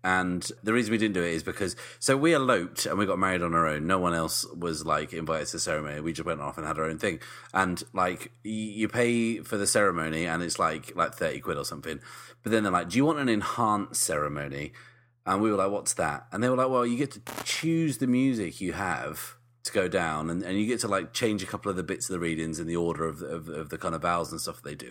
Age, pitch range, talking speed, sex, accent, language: 30-49, 85-115 Hz, 280 wpm, male, British, English